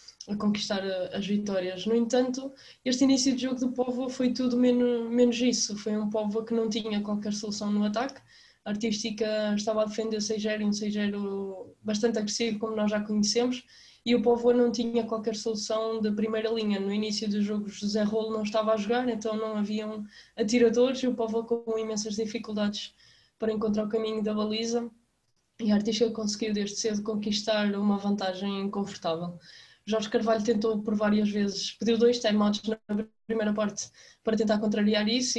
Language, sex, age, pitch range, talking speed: Portuguese, female, 20-39, 210-230 Hz, 175 wpm